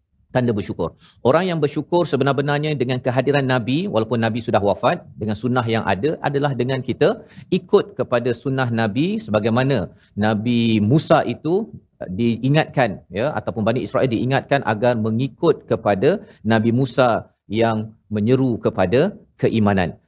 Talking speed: 130 wpm